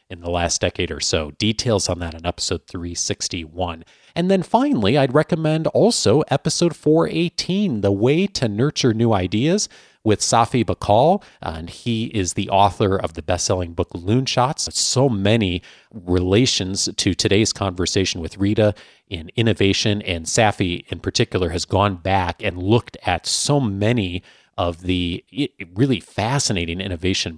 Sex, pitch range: male, 90-125 Hz